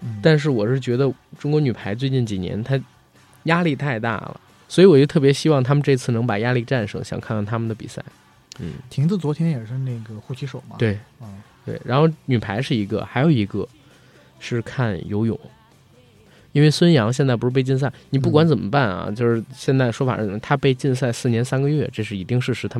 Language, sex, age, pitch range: Chinese, male, 20-39, 115-145 Hz